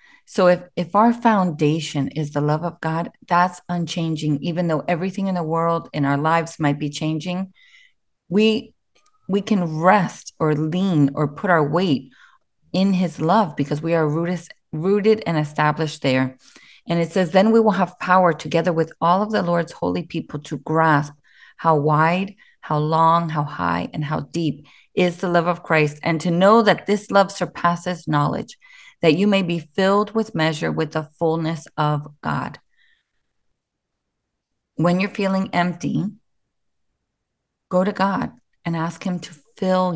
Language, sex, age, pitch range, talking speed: English, female, 30-49, 155-190 Hz, 165 wpm